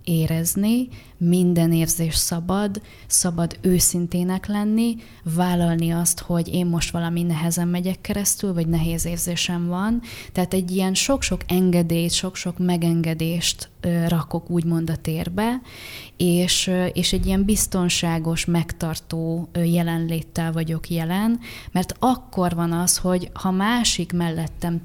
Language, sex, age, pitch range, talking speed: Hungarian, female, 20-39, 165-180 Hz, 115 wpm